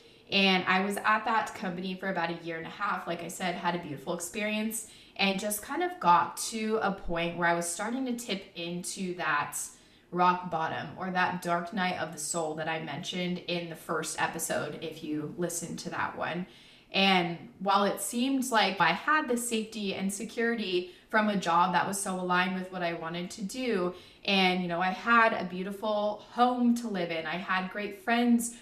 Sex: female